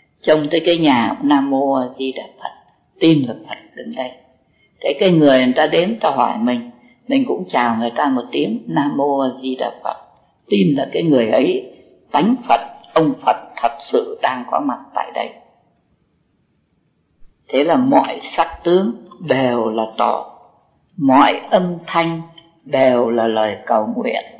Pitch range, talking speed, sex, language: 140-215 Hz, 165 wpm, female, Vietnamese